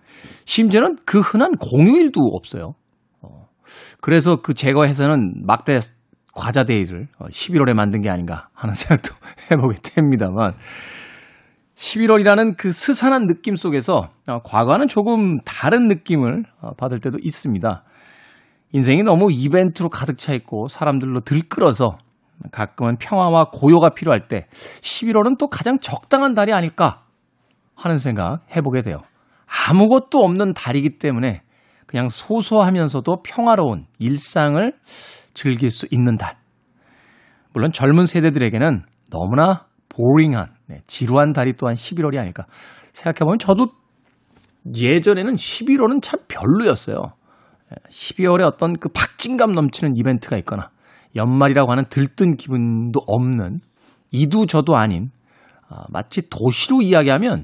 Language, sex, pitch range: Korean, male, 125-195 Hz